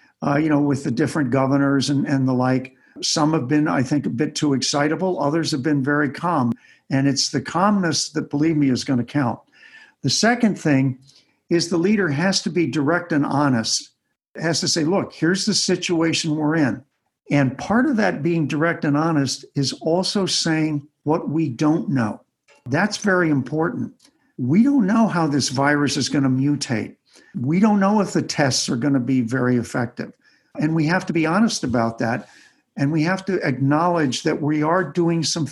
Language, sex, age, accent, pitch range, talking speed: English, male, 50-69, American, 140-175 Hz, 195 wpm